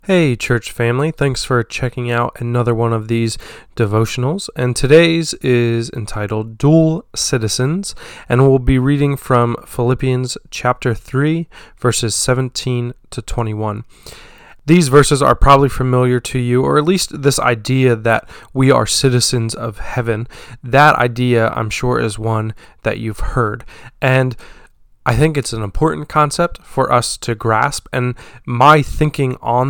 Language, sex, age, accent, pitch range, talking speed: English, male, 20-39, American, 115-140 Hz, 145 wpm